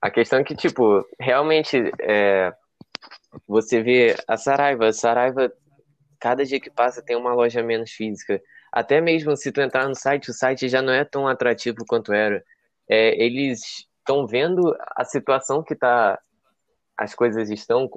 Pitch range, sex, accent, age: 115-135 Hz, male, Brazilian, 10-29